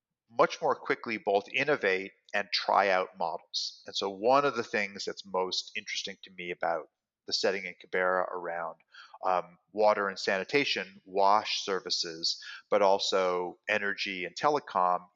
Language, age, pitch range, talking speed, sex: English, 40-59, 95-130 Hz, 145 wpm, male